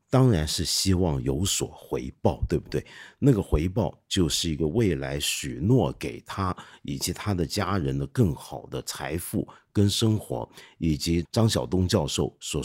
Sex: male